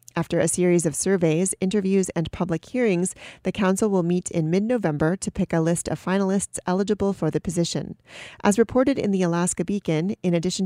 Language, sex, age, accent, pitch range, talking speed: English, female, 40-59, American, 170-195 Hz, 185 wpm